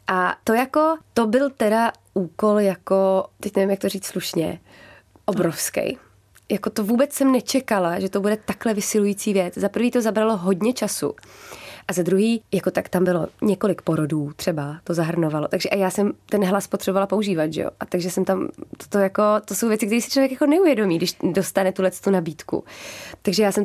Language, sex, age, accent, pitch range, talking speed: Czech, female, 20-39, native, 180-210 Hz, 195 wpm